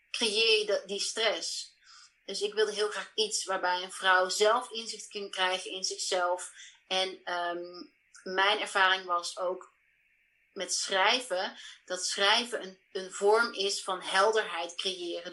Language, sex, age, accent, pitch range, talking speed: Dutch, female, 30-49, Dutch, 185-215 Hz, 140 wpm